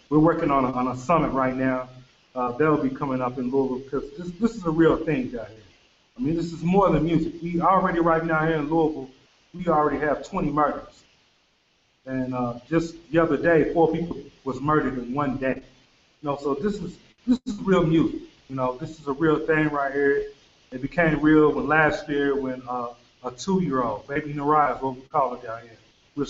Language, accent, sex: English, American, male